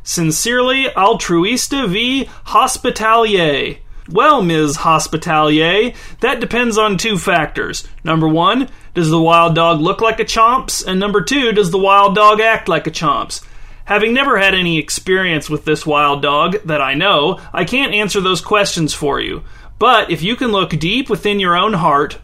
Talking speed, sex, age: 165 wpm, male, 30-49